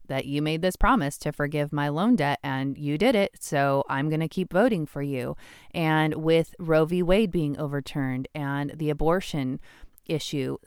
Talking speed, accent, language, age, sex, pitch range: 185 wpm, American, English, 30-49, female, 150-185 Hz